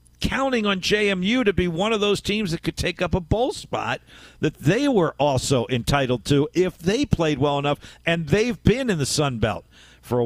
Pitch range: 130-185 Hz